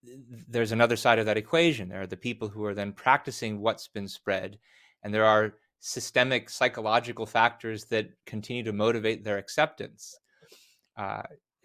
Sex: male